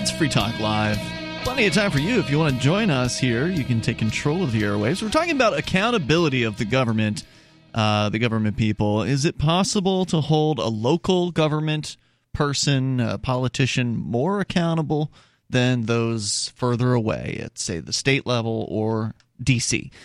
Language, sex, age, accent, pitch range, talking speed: English, male, 30-49, American, 115-150 Hz, 175 wpm